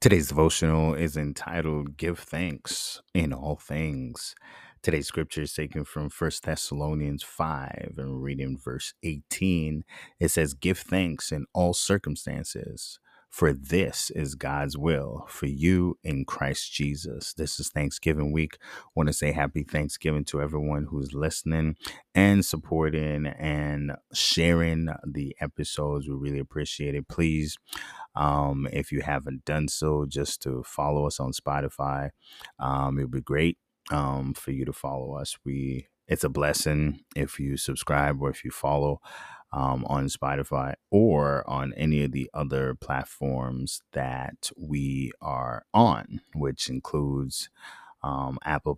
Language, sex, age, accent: English, male, 30-49, American